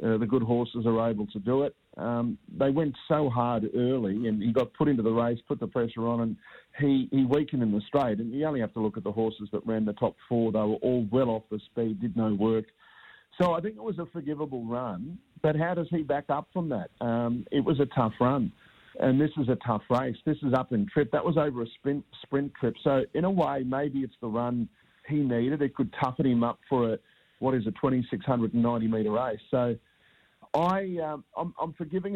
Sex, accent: male, Australian